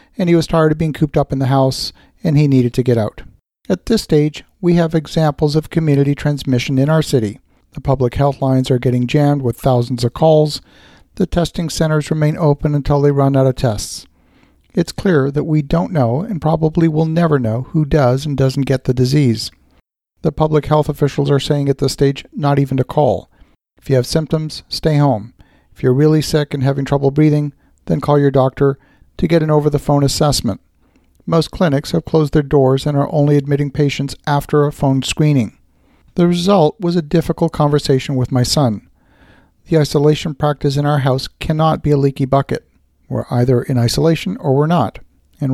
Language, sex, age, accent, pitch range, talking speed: English, male, 50-69, American, 130-155 Hz, 195 wpm